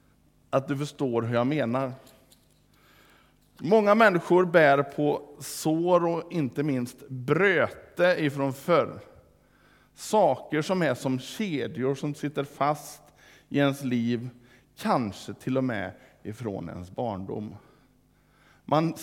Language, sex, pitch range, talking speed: Swedish, male, 125-165 Hz, 115 wpm